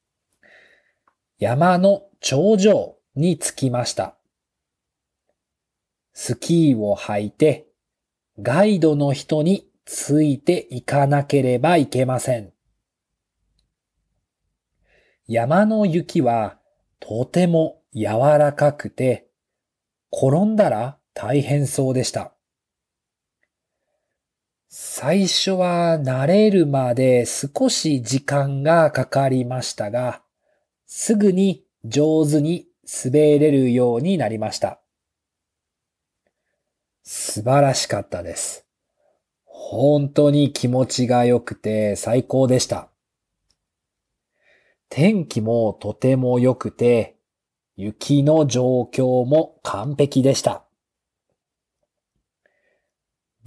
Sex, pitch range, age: male, 120-155 Hz, 40-59